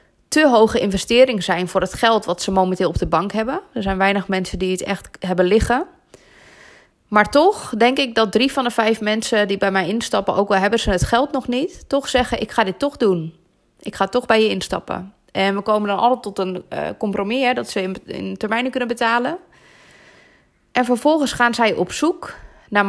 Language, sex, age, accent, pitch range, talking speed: Dutch, female, 20-39, Dutch, 195-245 Hz, 210 wpm